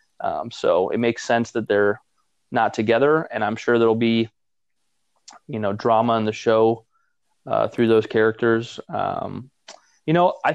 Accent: American